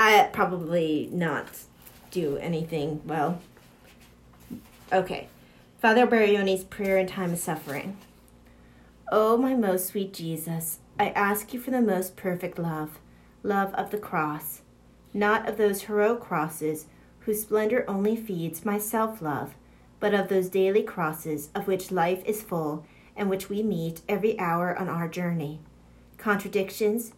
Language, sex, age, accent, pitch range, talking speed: English, female, 40-59, American, 165-210 Hz, 135 wpm